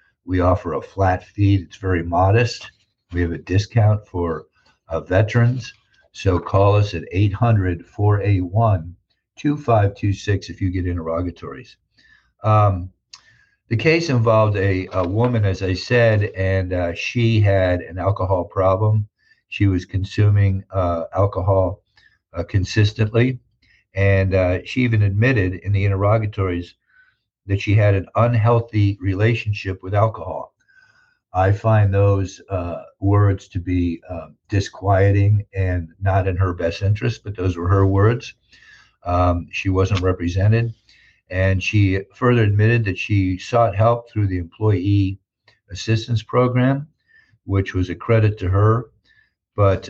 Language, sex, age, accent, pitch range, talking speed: English, male, 60-79, American, 95-110 Hz, 130 wpm